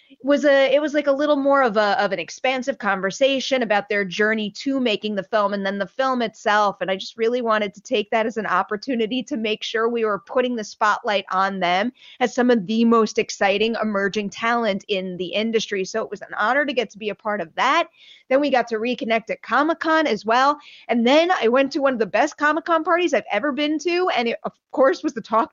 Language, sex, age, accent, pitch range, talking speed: English, female, 30-49, American, 205-270 Hz, 240 wpm